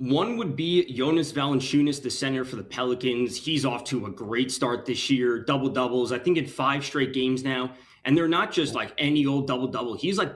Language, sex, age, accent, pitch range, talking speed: English, male, 20-39, American, 125-140 Hz, 210 wpm